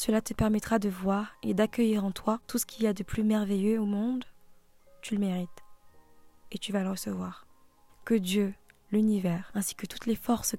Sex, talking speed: female, 200 wpm